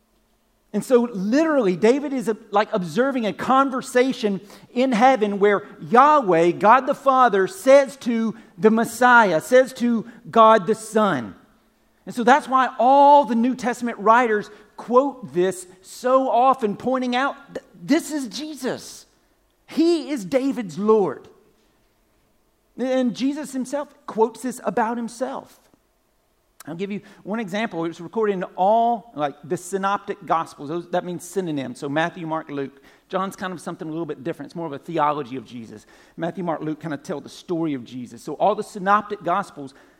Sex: male